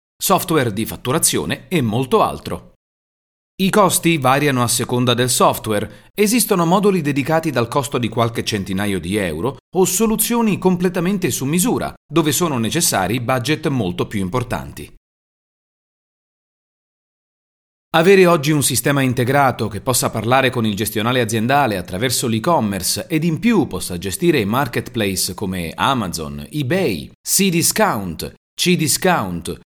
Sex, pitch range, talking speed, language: male, 110-170 Hz, 120 wpm, Italian